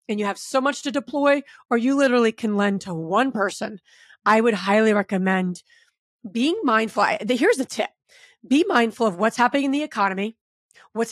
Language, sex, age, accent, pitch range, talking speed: English, female, 30-49, American, 200-245 Hz, 185 wpm